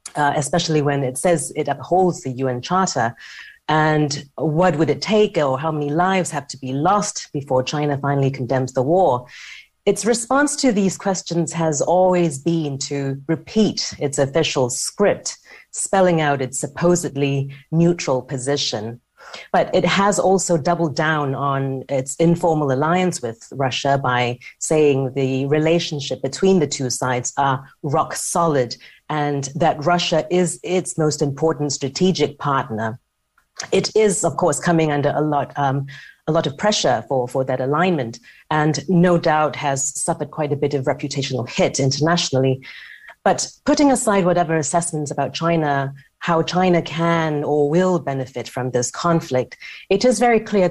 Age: 30-49